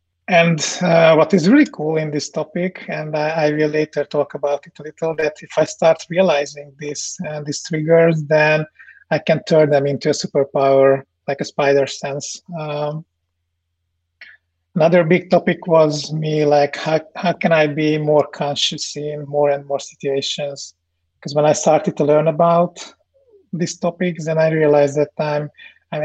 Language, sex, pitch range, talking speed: English, male, 145-165 Hz, 170 wpm